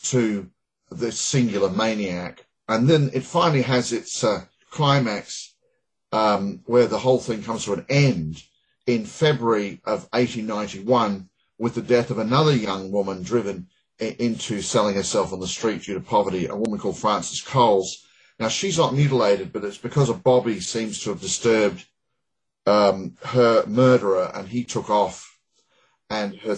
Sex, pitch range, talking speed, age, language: male, 100-130 Hz, 160 wpm, 40-59, English